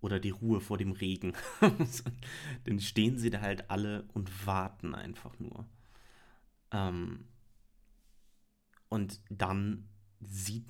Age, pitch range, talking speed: 30-49, 105-120 Hz, 105 wpm